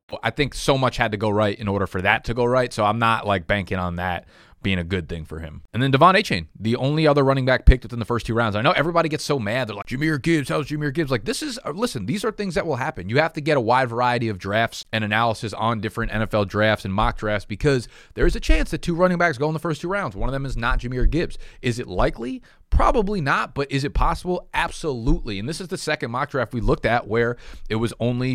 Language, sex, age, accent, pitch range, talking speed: English, male, 30-49, American, 105-135 Hz, 275 wpm